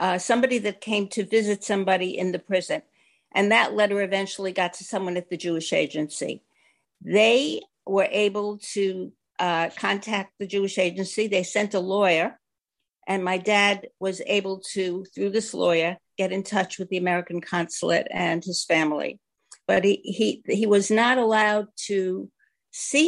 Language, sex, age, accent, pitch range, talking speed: English, female, 60-79, American, 180-215 Hz, 160 wpm